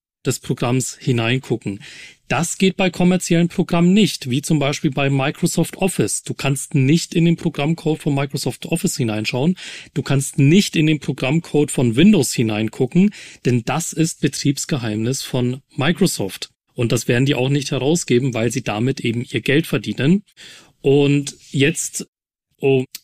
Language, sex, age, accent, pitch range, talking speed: German, male, 40-59, German, 130-170 Hz, 150 wpm